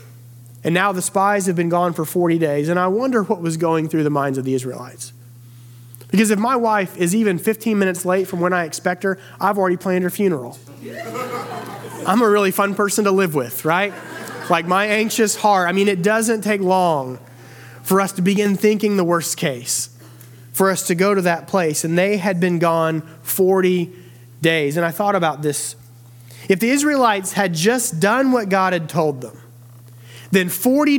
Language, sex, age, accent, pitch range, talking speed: English, male, 30-49, American, 140-205 Hz, 195 wpm